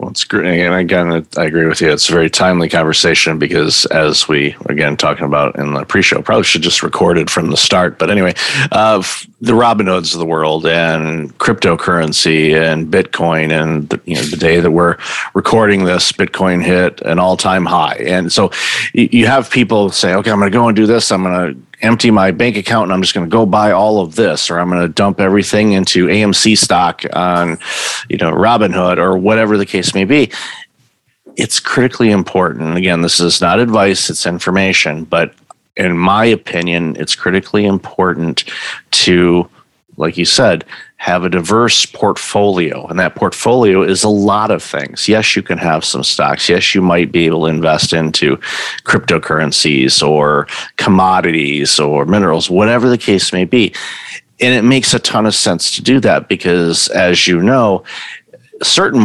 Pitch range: 85-105 Hz